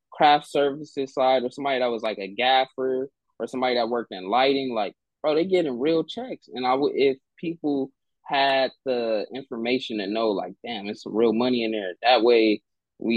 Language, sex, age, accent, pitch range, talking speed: English, male, 20-39, American, 115-135 Hz, 190 wpm